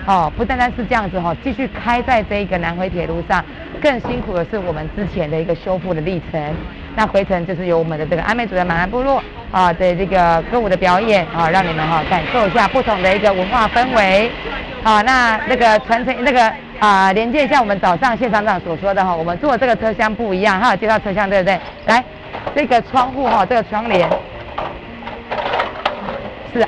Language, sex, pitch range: Chinese, female, 180-230 Hz